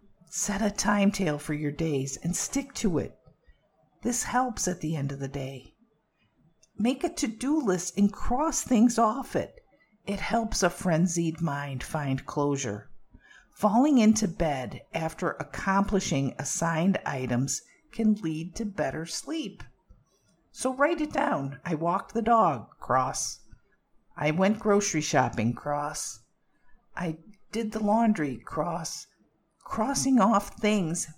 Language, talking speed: English, 130 wpm